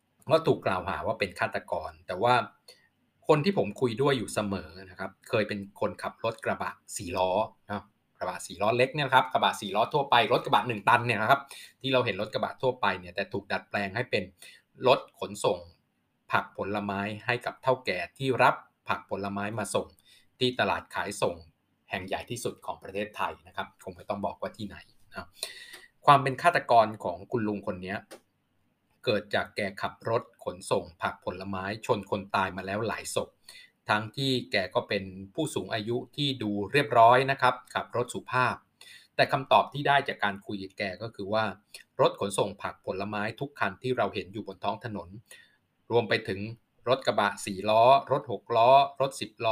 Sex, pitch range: male, 100-130 Hz